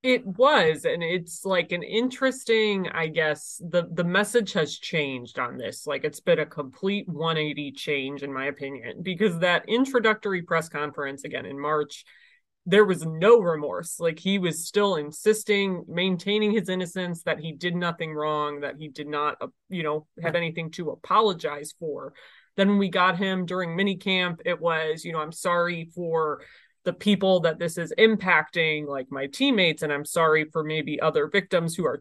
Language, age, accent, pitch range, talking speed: English, 20-39, American, 155-200 Hz, 175 wpm